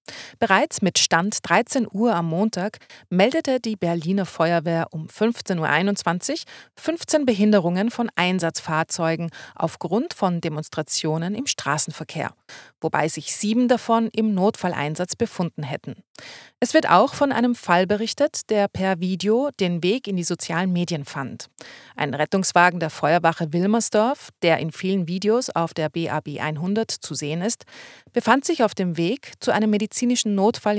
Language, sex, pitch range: German, female, 165-225 Hz